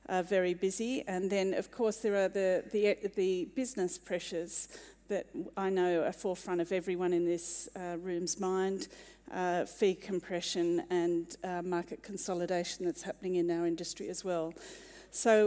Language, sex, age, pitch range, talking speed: English, female, 40-59, 180-205 Hz, 160 wpm